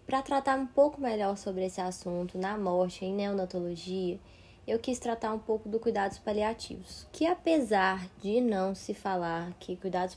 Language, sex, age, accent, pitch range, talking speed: Portuguese, female, 20-39, Brazilian, 185-240 Hz, 165 wpm